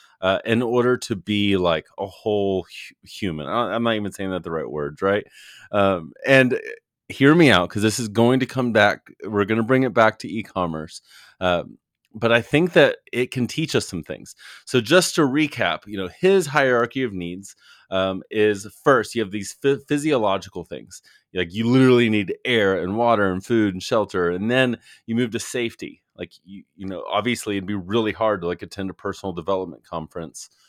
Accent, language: American, English